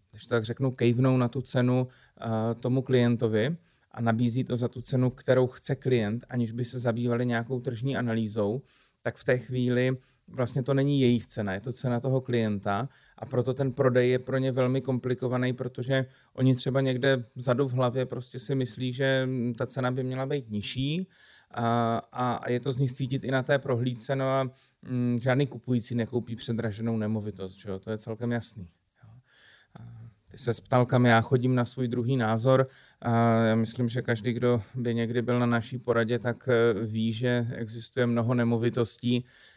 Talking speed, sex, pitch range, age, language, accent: 180 wpm, male, 115-125 Hz, 30-49, Czech, native